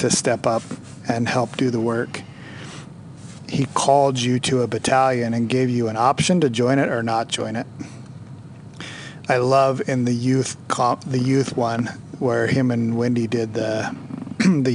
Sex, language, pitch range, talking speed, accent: male, English, 120-140 Hz, 170 wpm, American